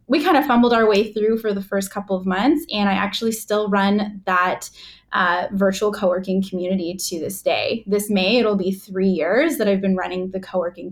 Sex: female